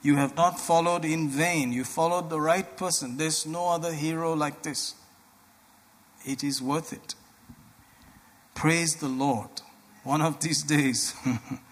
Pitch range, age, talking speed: 130-155 Hz, 50-69, 145 wpm